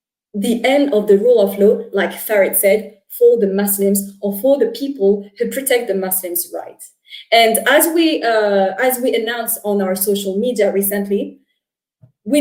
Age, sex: 20-39, female